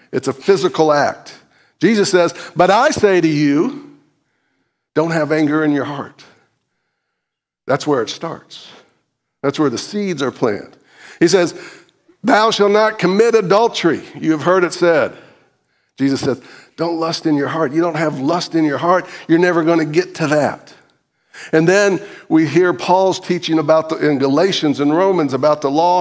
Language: English